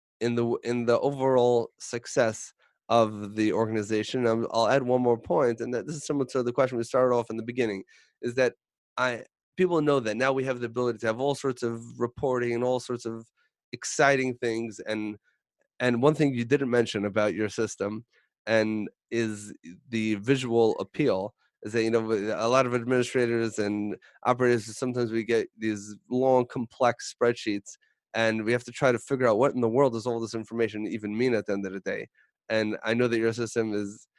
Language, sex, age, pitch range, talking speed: English, male, 30-49, 110-125 Hz, 200 wpm